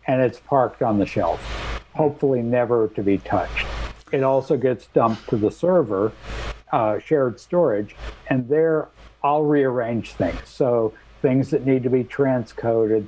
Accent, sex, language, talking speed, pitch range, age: American, male, English, 150 wpm, 105-130 Hz, 60-79